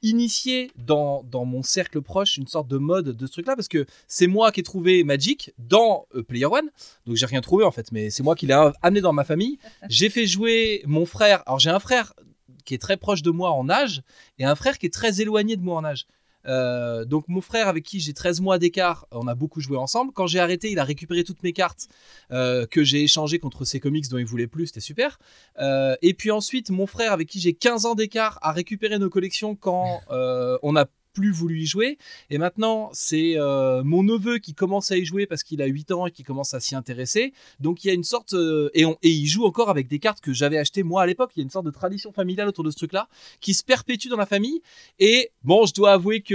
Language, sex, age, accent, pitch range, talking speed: French, male, 20-39, French, 145-205 Hz, 255 wpm